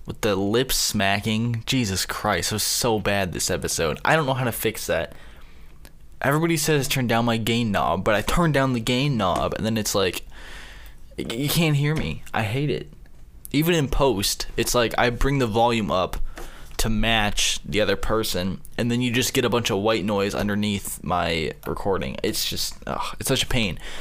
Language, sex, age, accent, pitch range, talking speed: English, male, 20-39, American, 105-125 Hz, 195 wpm